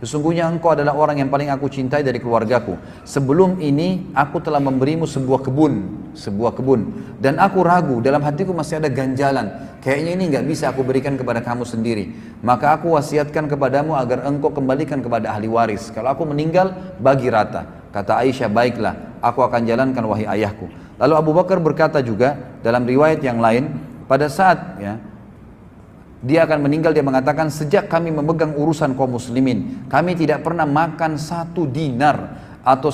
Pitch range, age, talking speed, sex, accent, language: 130-160 Hz, 30-49, 160 wpm, male, native, Indonesian